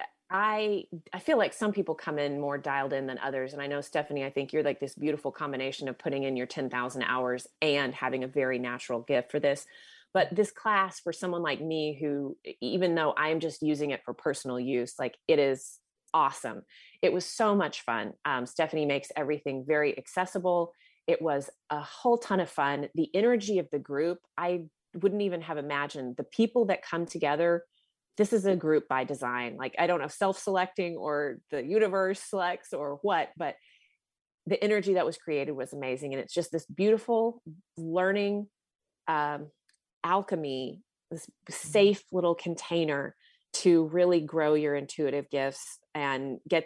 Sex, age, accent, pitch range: female, 30-49, American, 140-185 Hz